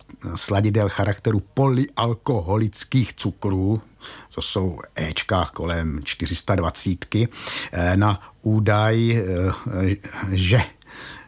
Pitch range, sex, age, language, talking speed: 90-105 Hz, male, 50-69, Czech, 65 wpm